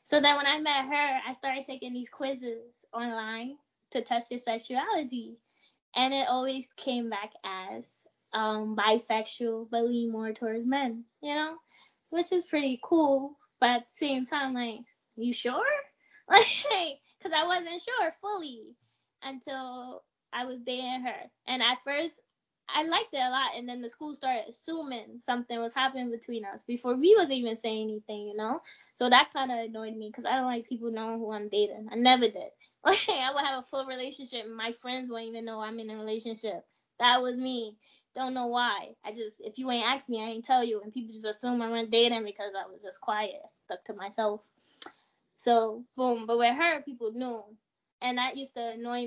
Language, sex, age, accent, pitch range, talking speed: English, female, 10-29, American, 230-275 Hz, 200 wpm